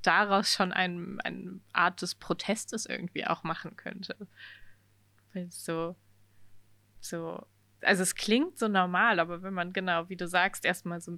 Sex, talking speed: female, 155 wpm